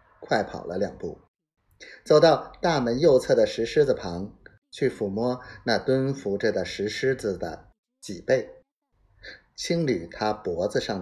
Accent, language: native, Chinese